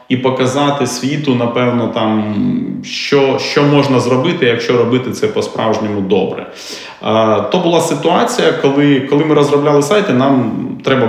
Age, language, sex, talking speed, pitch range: 30-49, Ukrainian, male, 125 wpm, 110-140 Hz